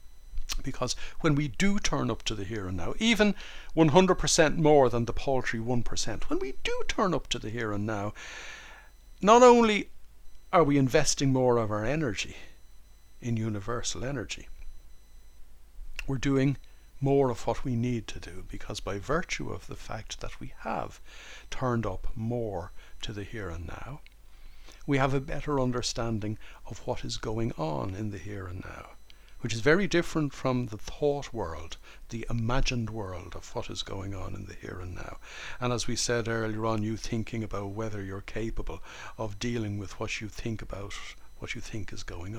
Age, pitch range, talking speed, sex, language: 60-79, 105-135 Hz, 180 wpm, male, English